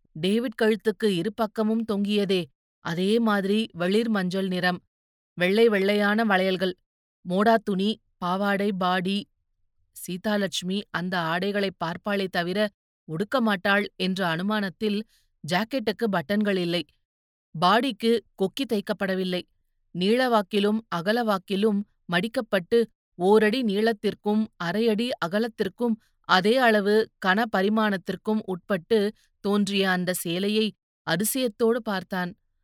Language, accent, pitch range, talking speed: Tamil, native, 185-220 Hz, 90 wpm